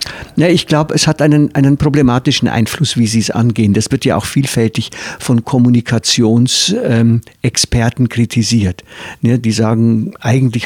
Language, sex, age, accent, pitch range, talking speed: German, male, 50-69, German, 115-140 Hz, 145 wpm